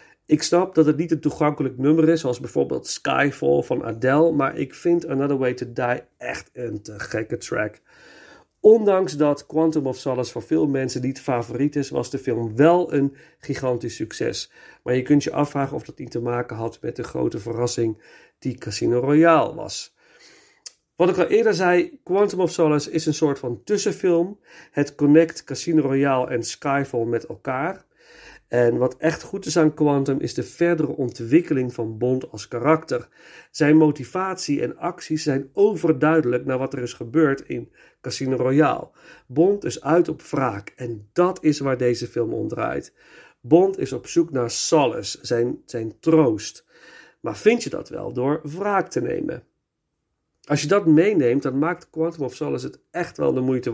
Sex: male